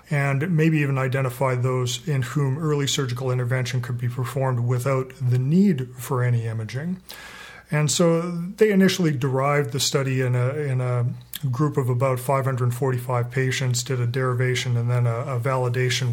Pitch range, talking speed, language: 125-145 Hz, 155 wpm, English